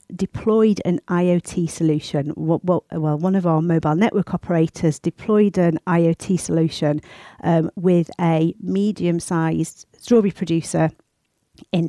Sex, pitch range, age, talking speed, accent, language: female, 160-185 Hz, 50-69, 115 wpm, British, English